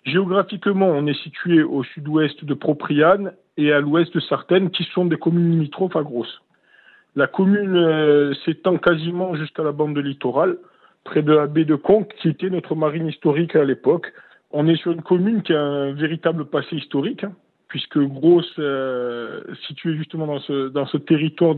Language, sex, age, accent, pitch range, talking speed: French, male, 40-59, French, 140-170 Hz, 180 wpm